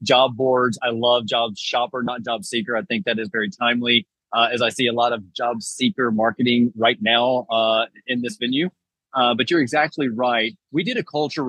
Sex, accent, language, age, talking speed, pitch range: male, American, English, 30-49, 210 wpm, 120-135 Hz